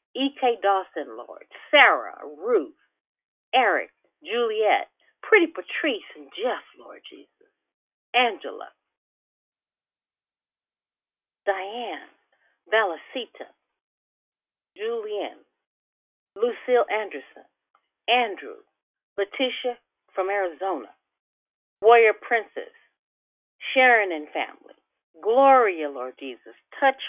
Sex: female